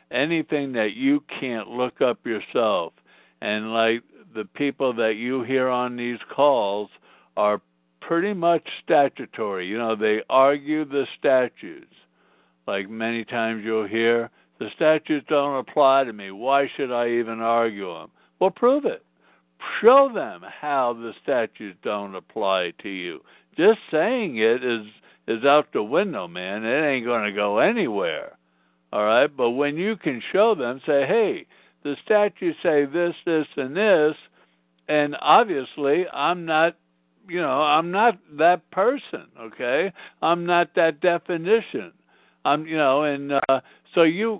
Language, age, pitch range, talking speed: English, 60-79, 115-165 Hz, 150 wpm